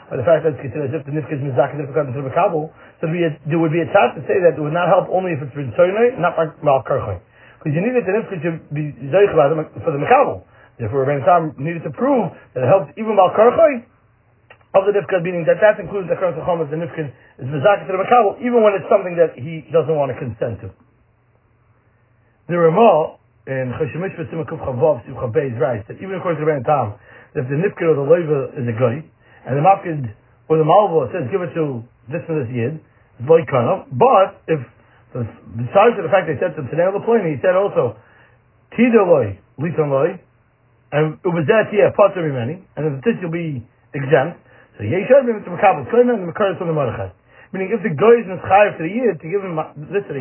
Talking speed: 225 wpm